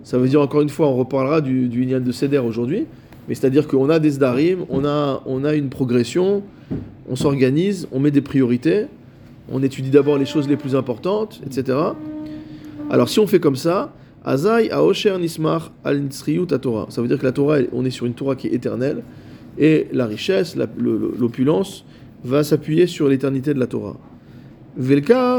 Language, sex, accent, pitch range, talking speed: French, male, French, 130-170 Hz, 195 wpm